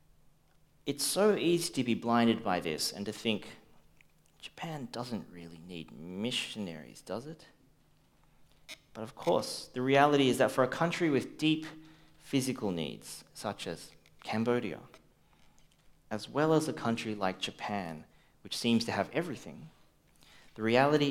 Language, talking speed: English, 140 wpm